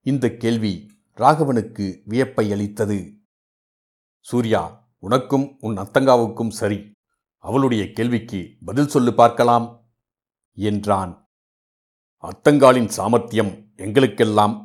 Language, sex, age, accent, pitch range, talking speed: Tamil, male, 60-79, native, 105-120 Hz, 80 wpm